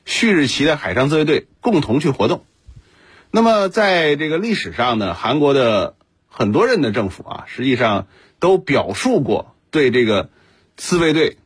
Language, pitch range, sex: Chinese, 110-155 Hz, male